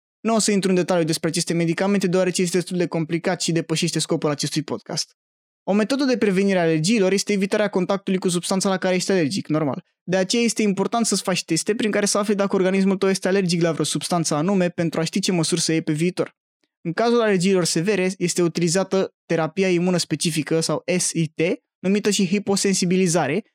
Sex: male